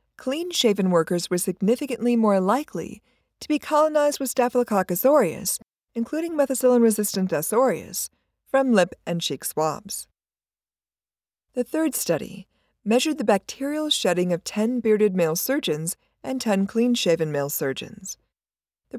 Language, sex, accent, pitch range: English, female, American, 170-245 Hz